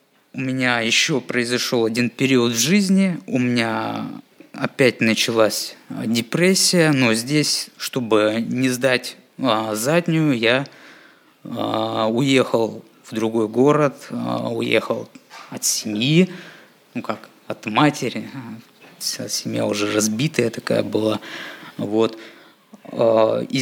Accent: native